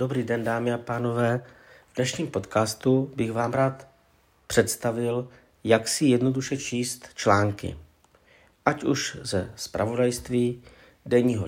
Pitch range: 100-130 Hz